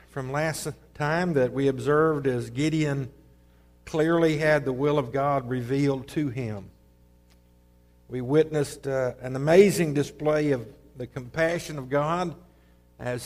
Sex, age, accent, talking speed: male, 60-79, American, 130 wpm